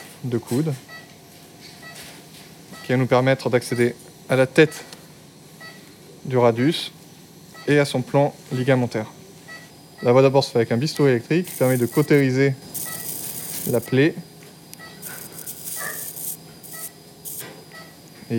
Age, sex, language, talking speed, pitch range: 20-39, male, French, 110 wpm, 125-160 Hz